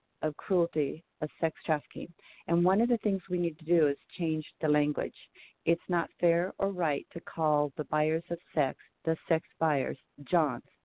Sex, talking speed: female, 185 wpm